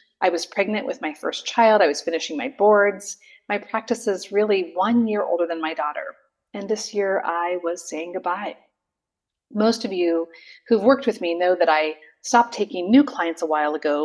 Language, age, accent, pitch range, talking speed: English, 30-49, American, 170-225 Hz, 195 wpm